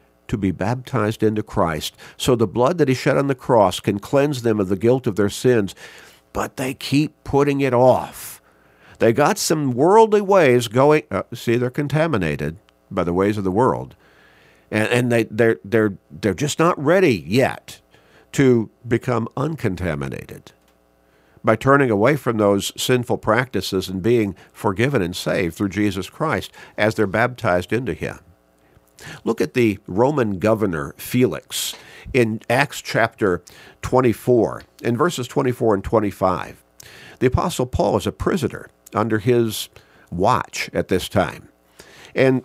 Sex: male